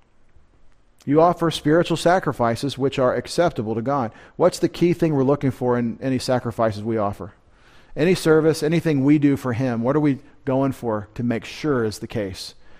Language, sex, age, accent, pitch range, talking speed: English, male, 40-59, American, 125-165 Hz, 185 wpm